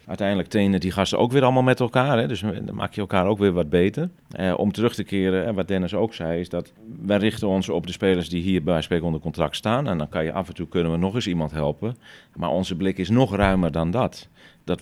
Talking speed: 265 wpm